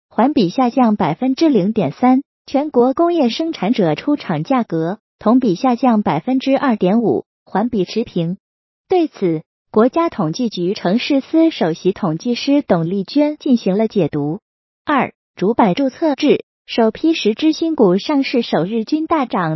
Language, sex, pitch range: Chinese, female, 210-310 Hz